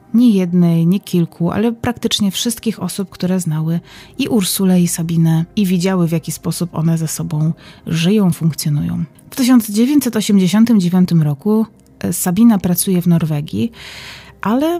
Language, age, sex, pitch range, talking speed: Polish, 30-49, female, 165-215 Hz, 130 wpm